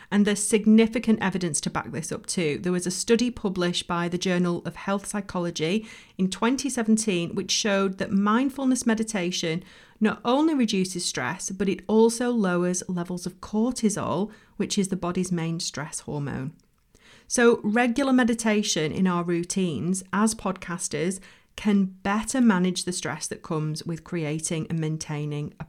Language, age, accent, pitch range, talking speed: English, 40-59, British, 175-220 Hz, 150 wpm